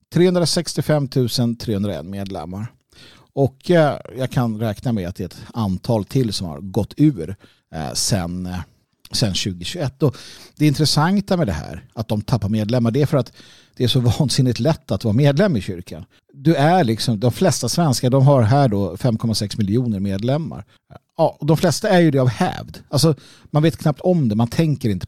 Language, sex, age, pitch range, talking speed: Swedish, male, 50-69, 105-145 Hz, 180 wpm